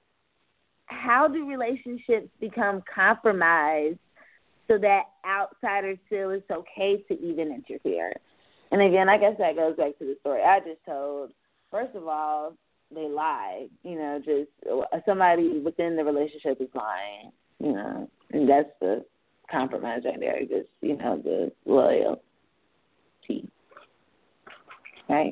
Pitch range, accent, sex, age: 150-220 Hz, American, female, 20-39